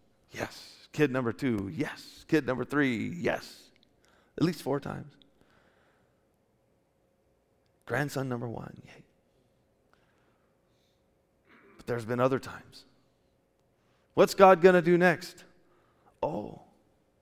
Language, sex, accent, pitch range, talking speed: English, male, American, 120-175 Hz, 100 wpm